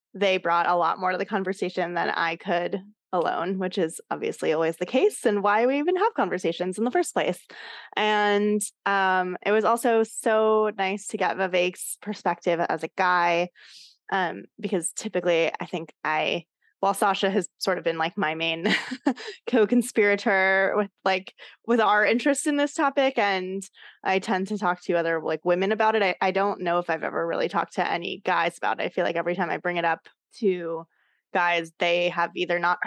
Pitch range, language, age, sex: 175-220 Hz, English, 20-39, female